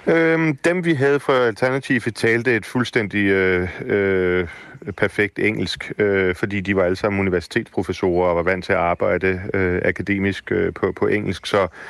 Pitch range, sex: 95-115 Hz, male